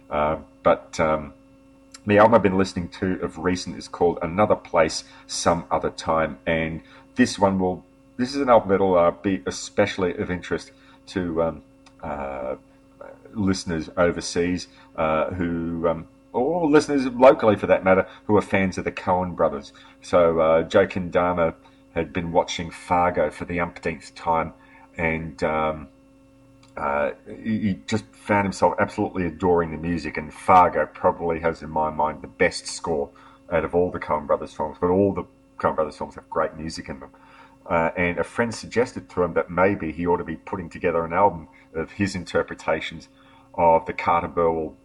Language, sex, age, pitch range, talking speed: English, male, 40-59, 85-110 Hz, 175 wpm